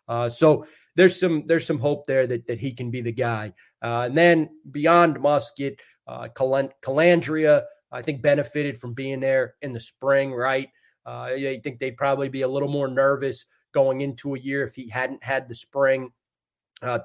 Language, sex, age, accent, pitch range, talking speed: English, male, 30-49, American, 125-145 Hz, 185 wpm